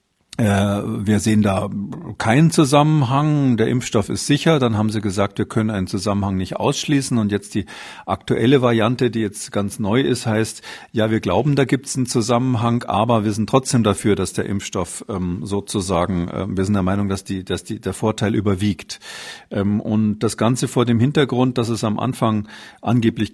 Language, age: German, 50-69